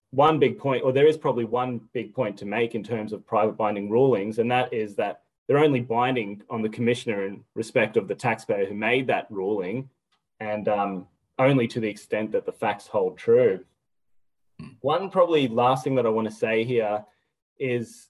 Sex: male